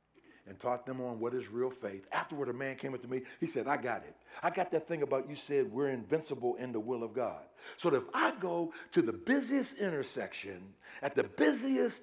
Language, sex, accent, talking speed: English, male, American, 225 wpm